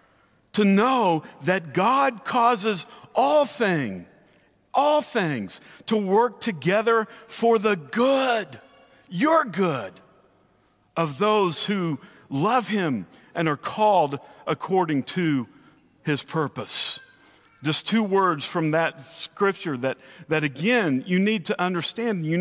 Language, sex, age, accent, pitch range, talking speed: English, male, 50-69, American, 155-235 Hz, 115 wpm